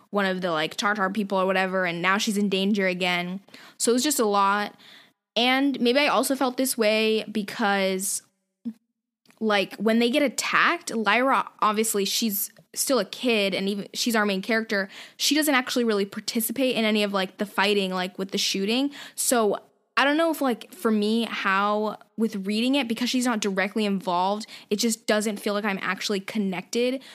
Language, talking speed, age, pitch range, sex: English, 190 wpm, 10-29, 195-240 Hz, female